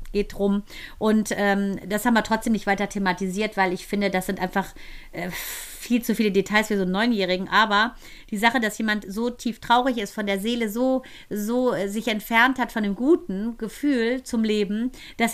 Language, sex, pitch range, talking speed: German, female, 210-245 Hz, 200 wpm